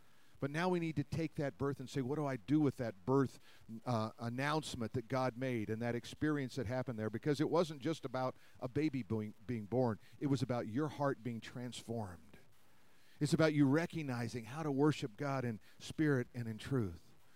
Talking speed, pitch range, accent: 195 wpm, 125-160 Hz, American